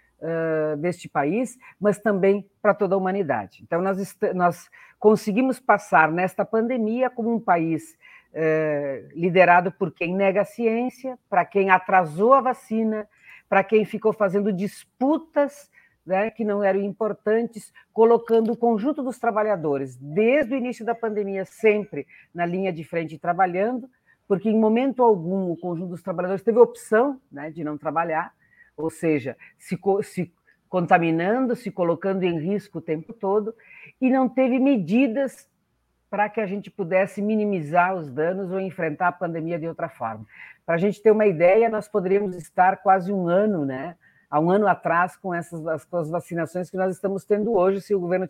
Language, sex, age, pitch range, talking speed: Portuguese, female, 50-69, 175-220 Hz, 165 wpm